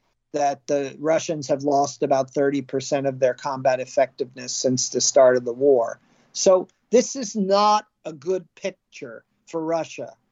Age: 50-69